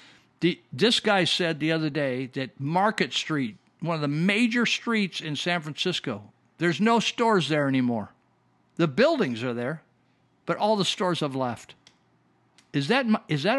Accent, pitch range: American, 150-195 Hz